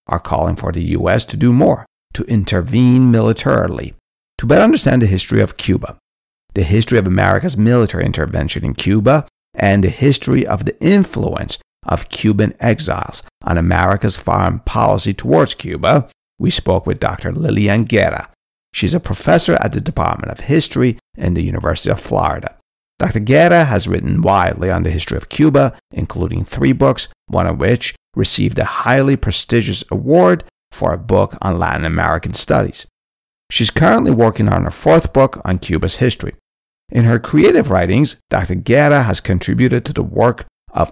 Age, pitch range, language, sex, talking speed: 50-69, 95-125 Hz, English, male, 160 wpm